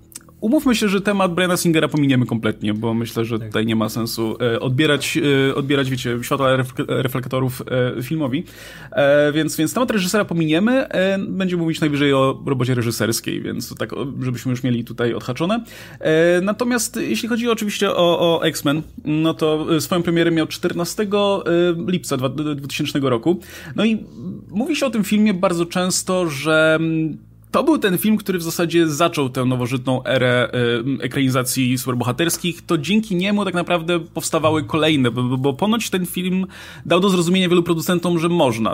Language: Polish